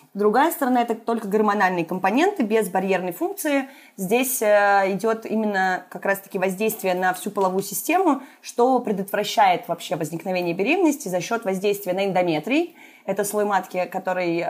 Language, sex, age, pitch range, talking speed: Russian, female, 20-39, 180-230 Hz, 135 wpm